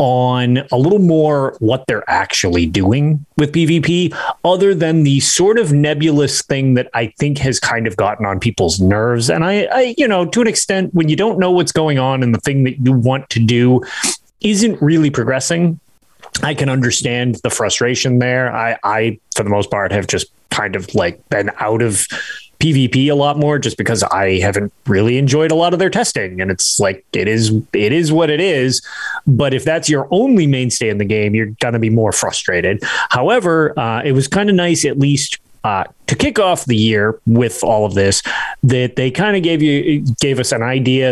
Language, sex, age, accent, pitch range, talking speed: English, male, 30-49, American, 115-155 Hz, 205 wpm